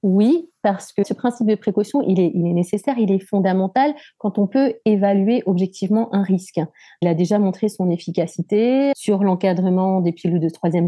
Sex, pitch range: female, 185-240 Hz